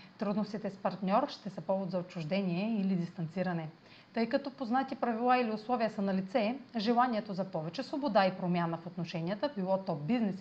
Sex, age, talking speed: female, 30-49, 175 wpm